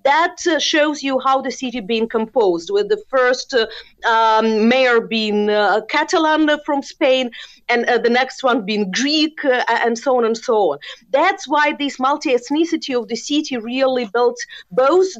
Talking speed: 175 wpm